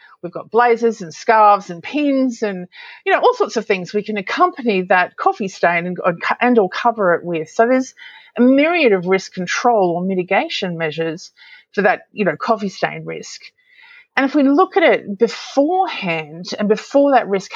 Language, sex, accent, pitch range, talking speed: English, female, Australian, 180-255 Hz, 190 wpm